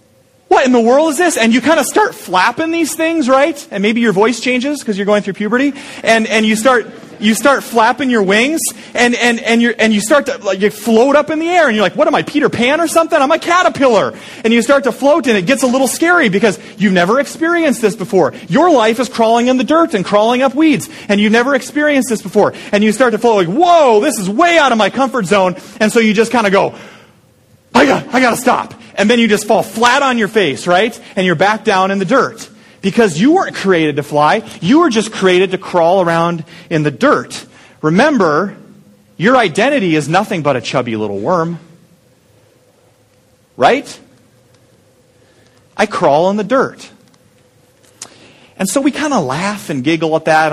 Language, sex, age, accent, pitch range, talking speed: English, male, 30-49, American, 160-260 Hz, 215 wpm